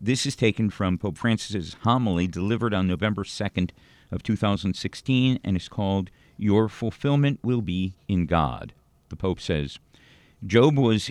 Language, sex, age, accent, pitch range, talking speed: English, male, 50-69, American, 95-125 Hz, 145 wpm